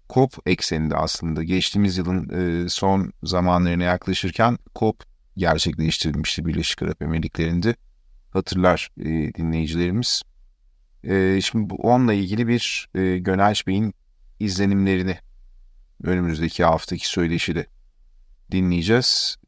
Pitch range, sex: 85-115 Hz, male